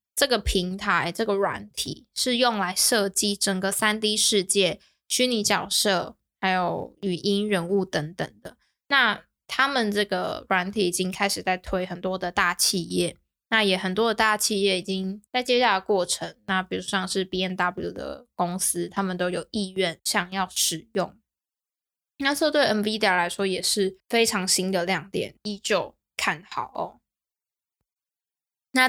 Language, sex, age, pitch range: Chinese, female, 10-29, 180-215 Hz